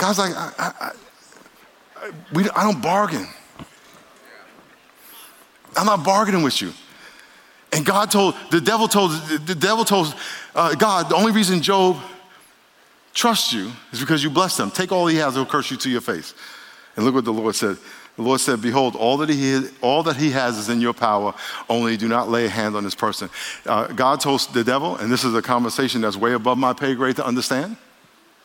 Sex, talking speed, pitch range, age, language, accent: male, 200 wpm, 115-160 Hz, 50-69, English, American